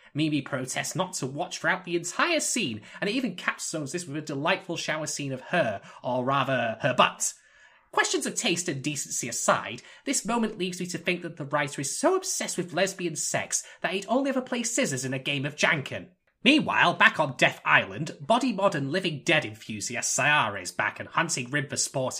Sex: male